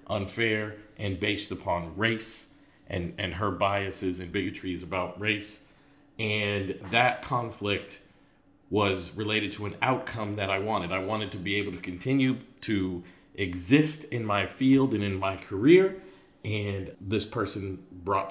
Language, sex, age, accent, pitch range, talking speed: English, male, 40-59, American, 95-125 Hz, 145 wpm